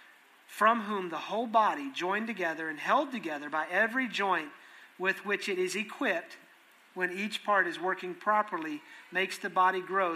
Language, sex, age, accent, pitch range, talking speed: English, male, 40-59, American, 185-225 Hz, 165 wpm